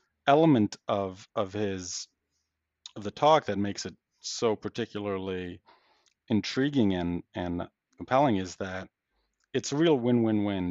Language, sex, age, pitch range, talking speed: English, male, 40-59, 100-120 Hz, 125 wpm